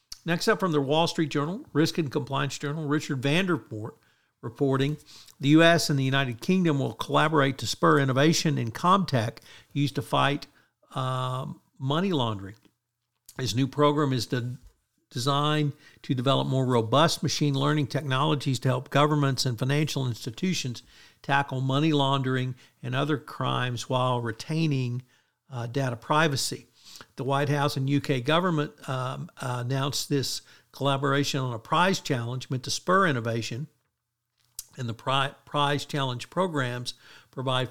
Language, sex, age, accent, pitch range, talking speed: English, male, 60-79, American, 125-150 Hz, 135 wpm